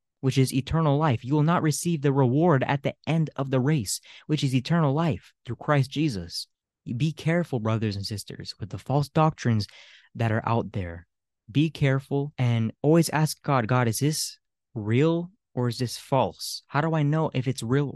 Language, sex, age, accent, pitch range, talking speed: English, male, 20-39, American, 115-145 Hz, 190 wpm